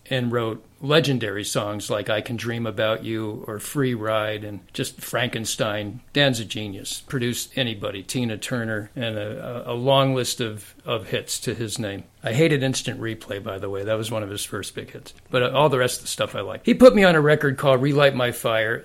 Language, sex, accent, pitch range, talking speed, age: English, male, American, 115-140 Hz, 215 wpm, 50-69